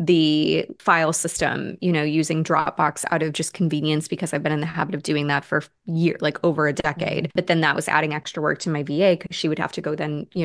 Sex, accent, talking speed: female, American, 260 wpm